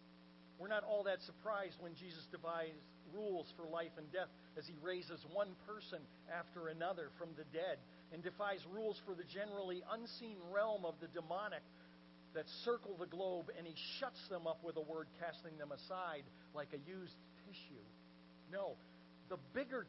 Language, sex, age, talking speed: English, male, 50-69, 170 wpm